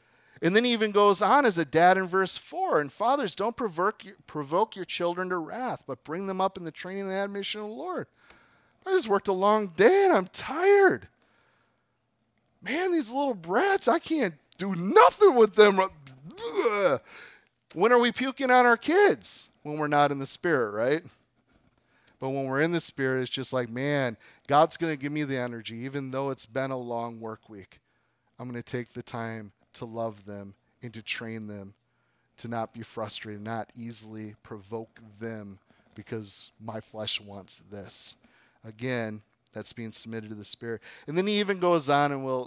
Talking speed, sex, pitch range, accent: 185 wpm, male, 115-180 Hz, American